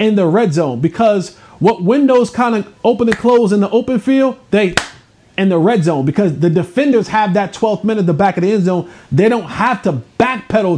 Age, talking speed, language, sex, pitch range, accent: 30-49, 225 wpm, English, male, 160-215 Hz, American